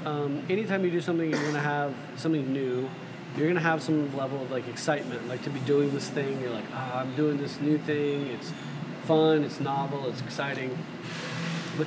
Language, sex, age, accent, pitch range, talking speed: English, male, 20-39, American, 125-155 Hz, 210 wpm